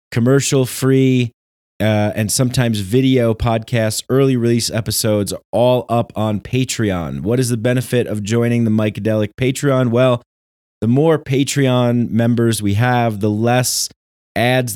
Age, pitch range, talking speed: 30-49, 100-120 Hz, 130 wpm